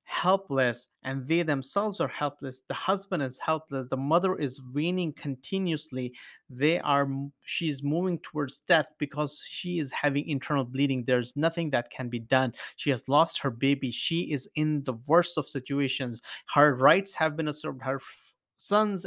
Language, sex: English, male